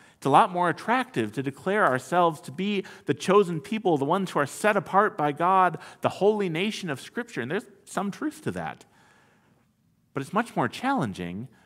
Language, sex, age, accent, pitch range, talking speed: English, male, 50-69, American, 140-200 Hz, 190 wpm